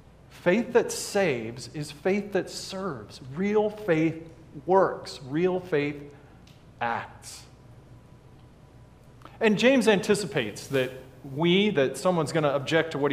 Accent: American